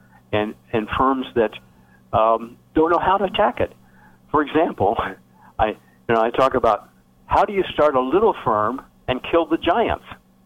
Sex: male